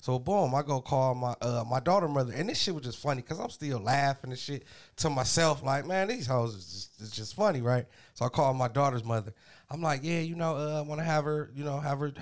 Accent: American